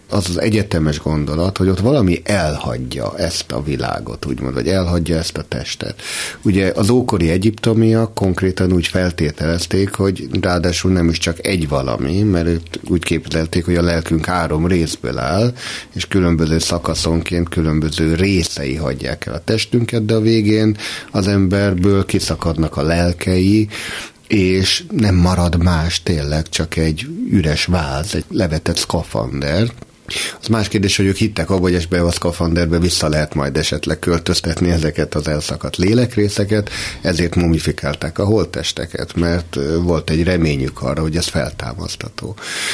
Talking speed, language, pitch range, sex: 140 wpm, Hungarian, 80-100 Hz, male